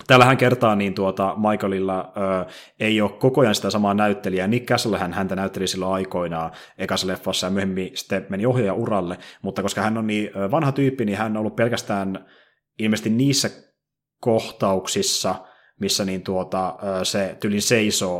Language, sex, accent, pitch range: Finnish, male, native, 95-115 Hz